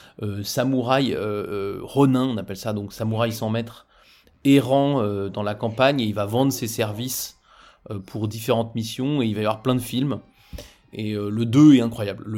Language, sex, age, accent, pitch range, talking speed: French, male, 30-49, French, 105-130 Hz, 200 wpm